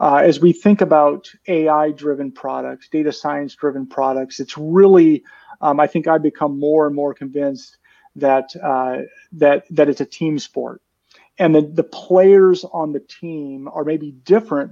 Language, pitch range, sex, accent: English, 145-180 Hz, male, American